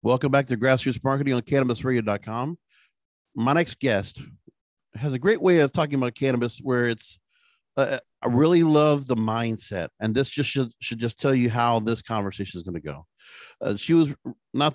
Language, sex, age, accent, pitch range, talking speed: English, male, 50-69, American, 120-165 Hz, 180 wpm